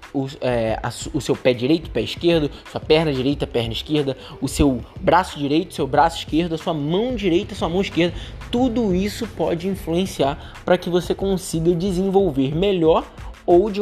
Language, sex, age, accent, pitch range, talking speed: Portuguese, male, 20-39, Brazilian, 155-210 Hz, 170 wpm